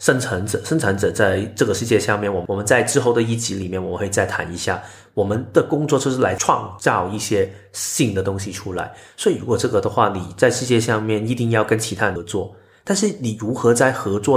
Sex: male